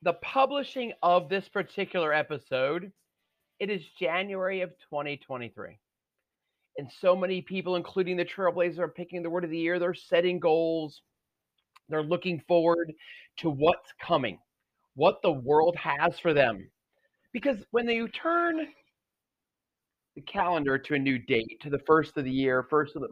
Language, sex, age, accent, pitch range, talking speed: English, male, 40-59, American, 160-235 Hz, 155 wpm